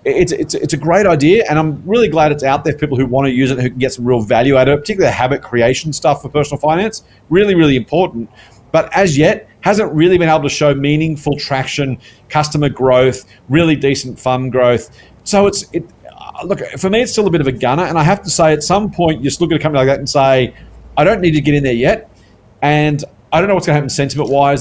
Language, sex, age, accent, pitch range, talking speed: English, male, 30-49, Australian, 130-160 Hz, 255 wpm